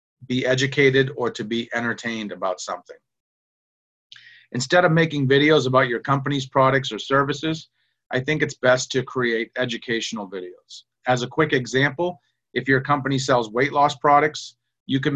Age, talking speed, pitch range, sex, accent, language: 40-59, 155 wpm, 115-140 Hz, male, American, English